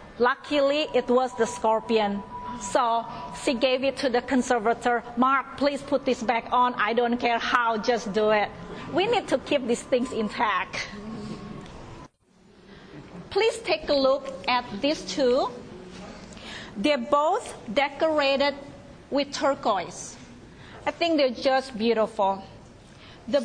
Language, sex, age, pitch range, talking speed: English, female, 40-59, 235-285 Hz, 130 wpm